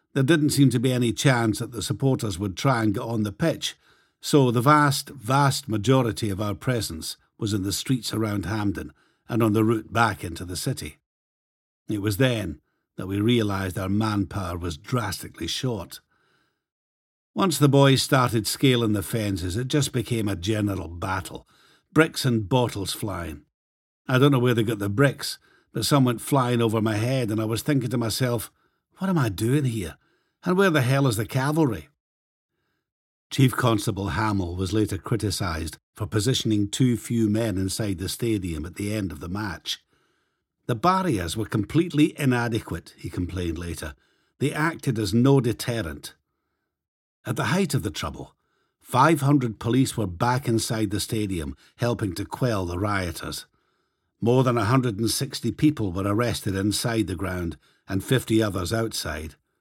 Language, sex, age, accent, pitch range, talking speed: English, male, 50-69, British, 100-130 Hz, 165 wpm